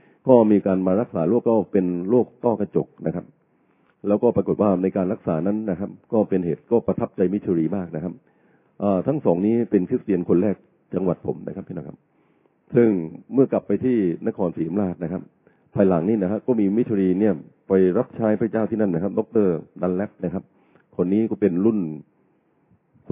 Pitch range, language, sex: 90-110 Hz, Thai, male